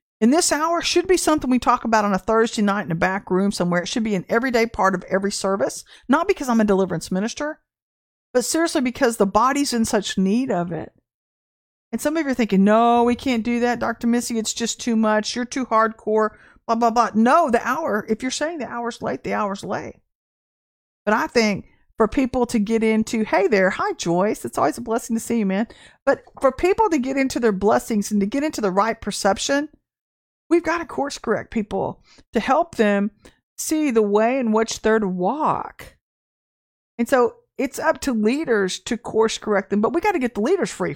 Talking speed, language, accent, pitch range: 215 wpm, English, American, 210-260 Hz